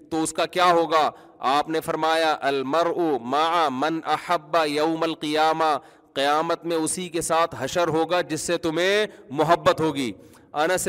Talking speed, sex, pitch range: 140 wpm, male, 160-220 Hz